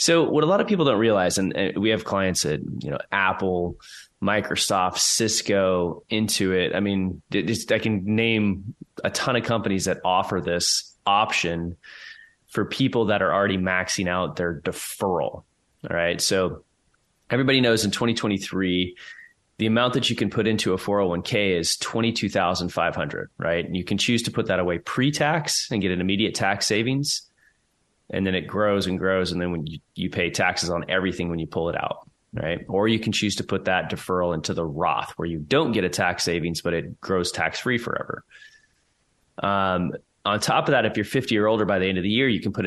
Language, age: English, 20-39